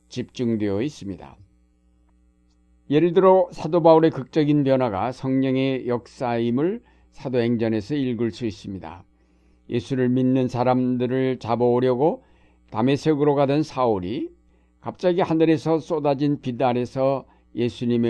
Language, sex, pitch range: Korean, male, 95-135 Hz